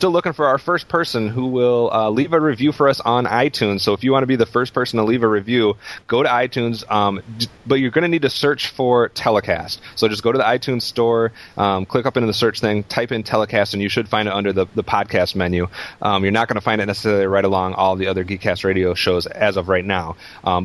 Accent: American